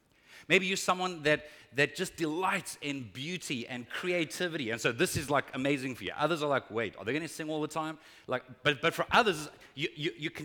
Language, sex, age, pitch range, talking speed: English, male, 30-49, 130-165 Hz, 230 wpm